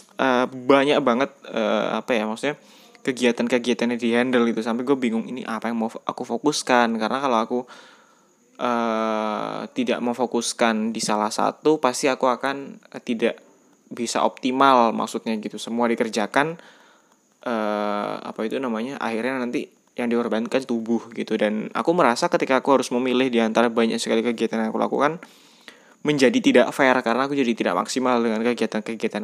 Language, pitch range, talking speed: Indonesian, 115-130 Hz, 155 wpm